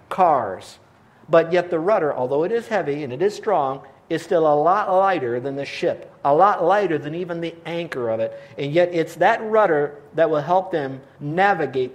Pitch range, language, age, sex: 130-170 Hz, English, 50-69, male